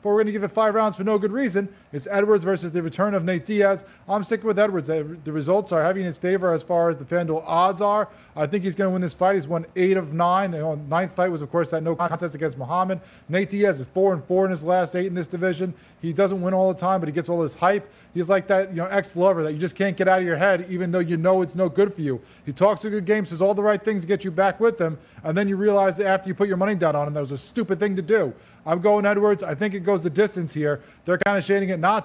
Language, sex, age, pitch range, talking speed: English, male, 20-39, 170-195 Hz, 305 wpm